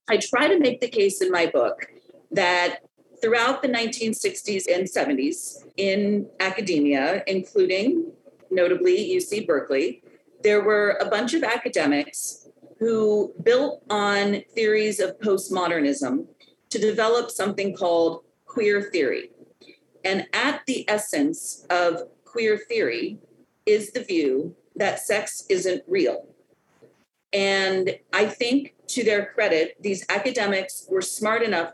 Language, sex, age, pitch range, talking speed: English, female, 40-59, 195-295 Hz, 120 wpm